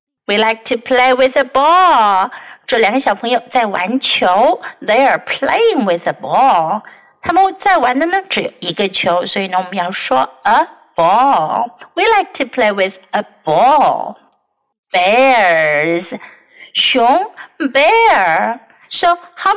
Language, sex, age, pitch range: Chinese, female, 50-69, 225-350 Hz